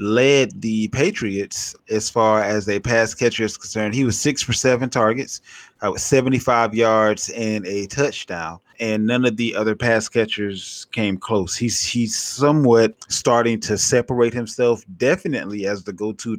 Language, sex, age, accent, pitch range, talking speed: English, male, 20-39, American, 110-130 Hz, 155 wpm